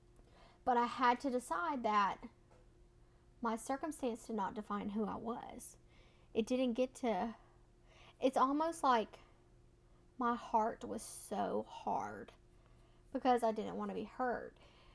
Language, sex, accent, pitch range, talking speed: English, female, American, 215-245 Hz, 135 wpm